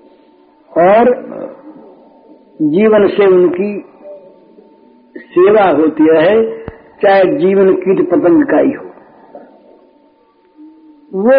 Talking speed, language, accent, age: 80 wpm, Hindi, native, 60-79